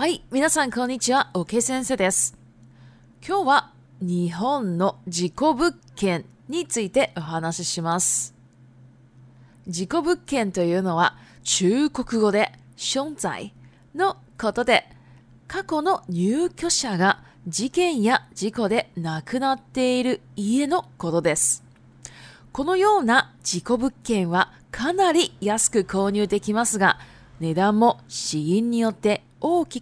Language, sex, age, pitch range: Japanese, female, 20-39, 160-260 Hz